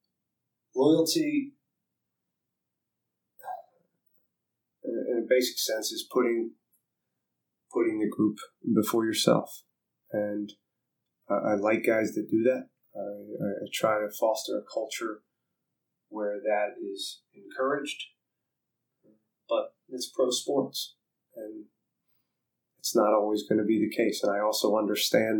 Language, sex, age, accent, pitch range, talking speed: English, male, 30-49, American, 105-120 Hz, 115 wpm